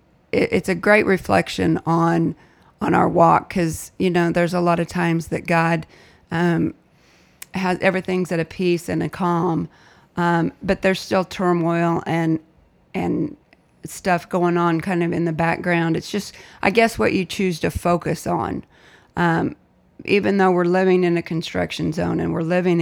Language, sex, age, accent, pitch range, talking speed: English, female, 30-49, American, 165-180 Hz, 170 wpm